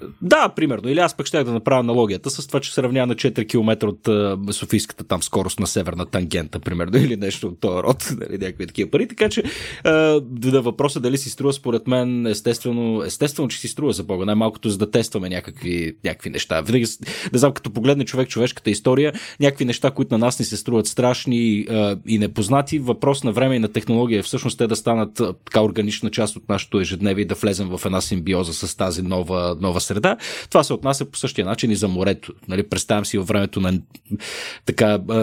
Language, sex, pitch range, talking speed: Bulgarian, male, 100-130 Hz, 200 wpm